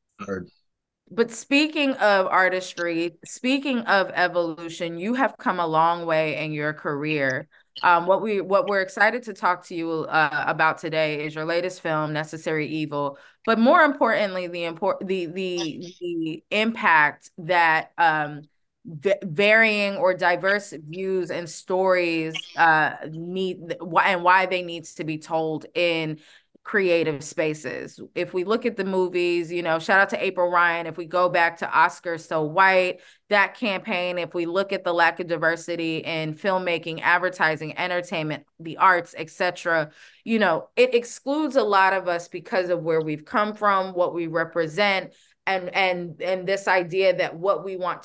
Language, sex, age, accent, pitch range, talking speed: English, female, 20-39, American, 160-190 Hz, 160 wpm